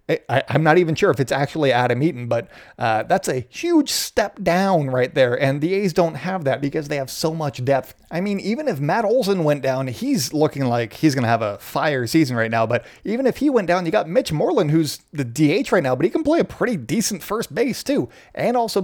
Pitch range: 125-190 Hz